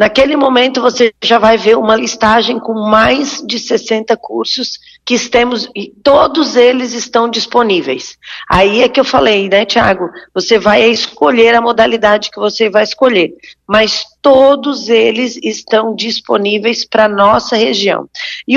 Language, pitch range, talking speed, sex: Portuguese, 205-250 Hz, 150 wpm, female